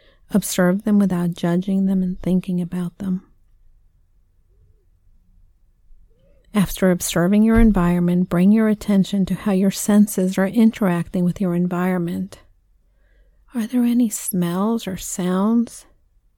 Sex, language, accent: female, English, American